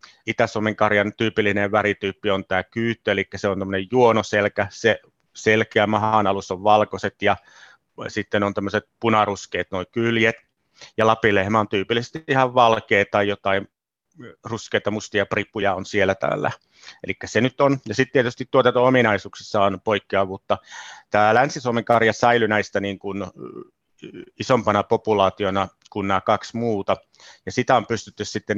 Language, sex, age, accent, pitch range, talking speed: Finnish, male, 30-49, native, 100-115 Hz, 135 wpm